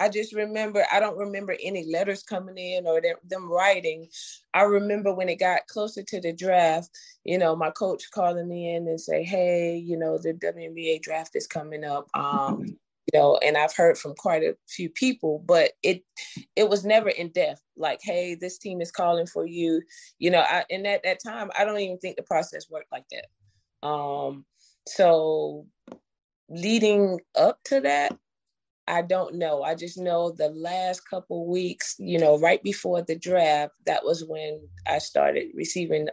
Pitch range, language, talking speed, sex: 160-190 Hz, English, 185 wpm, female